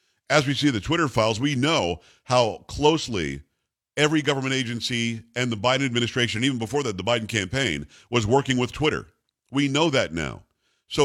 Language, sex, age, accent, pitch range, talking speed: English, male, 50-69, American, 110-140 Hz, 175 wpm